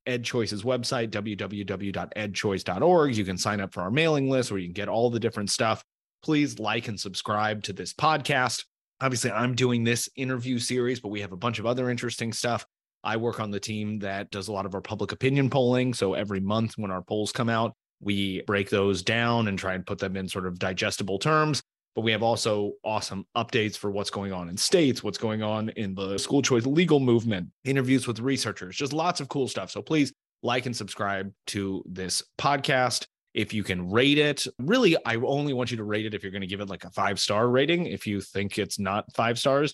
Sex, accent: male, American